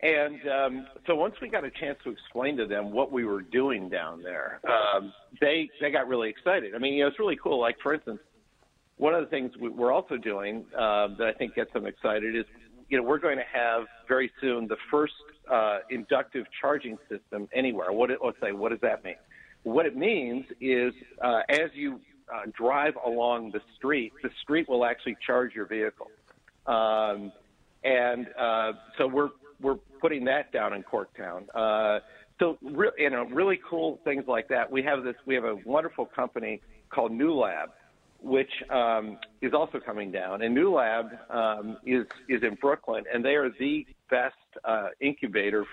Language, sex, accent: English, male, American